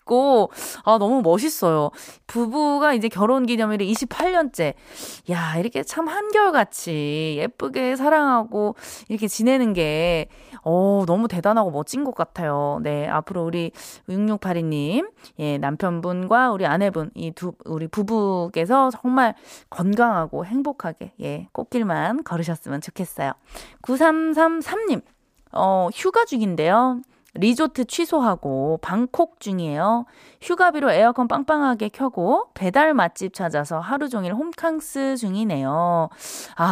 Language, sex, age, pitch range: Korean, female, 20-39, 170-265 Hz